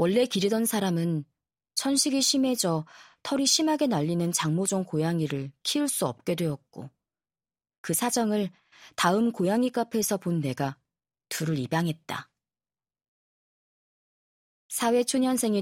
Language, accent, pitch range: Korean, native, 155-230 Hz